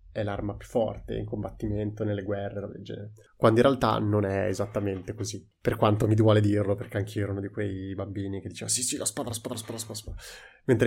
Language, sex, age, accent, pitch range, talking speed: Italian, male, 20-39, native, 105-120 Hz, 220 wpm